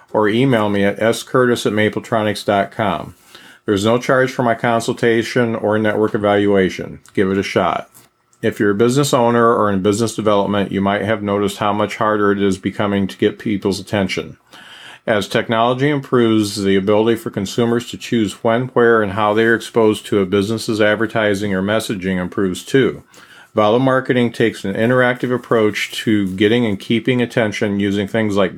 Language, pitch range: English, 105-120 Hz